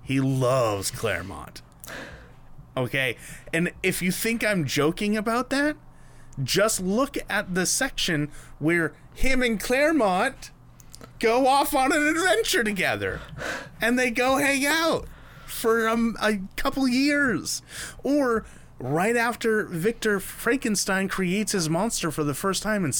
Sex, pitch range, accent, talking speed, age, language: male, 170-260 Hz, American, 130 wpm, 30-49, English